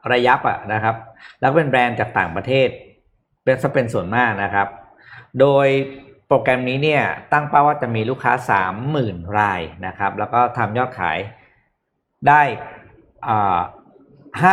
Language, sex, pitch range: Thai, male, 105-135 Hz